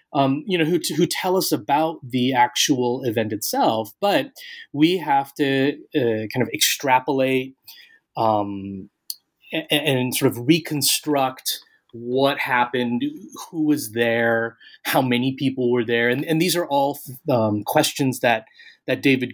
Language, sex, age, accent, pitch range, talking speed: English, male, 30-49, American, 120-160 Hz, 145 wpm